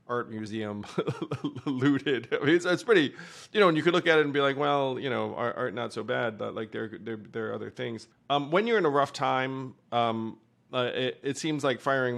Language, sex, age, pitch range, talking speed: English, male, 30-49, 115-135 Hz, 240 wpm